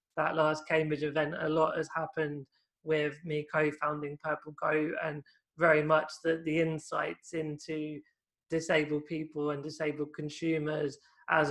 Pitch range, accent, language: 150-160 Hz, British, English